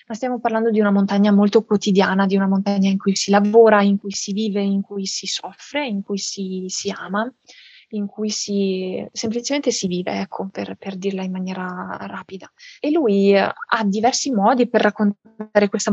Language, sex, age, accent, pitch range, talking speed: Italian, female, 20-39, native, 195-225 Hz, 185 wpm